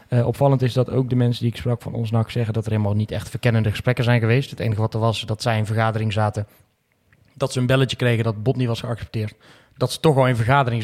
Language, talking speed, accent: Dutch, 275 wpm, Dutch